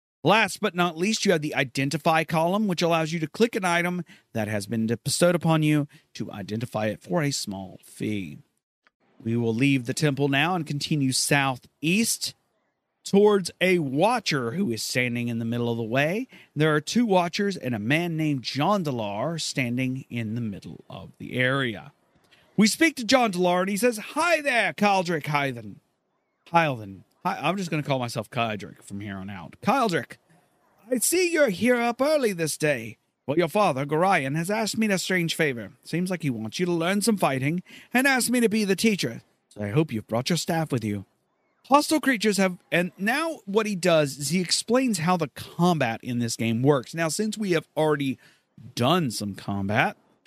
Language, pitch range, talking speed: English, 125-195 Hz, 195 wpm